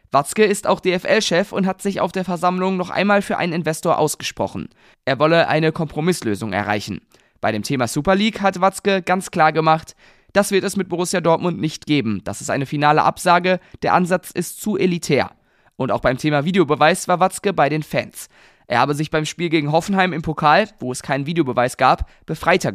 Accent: German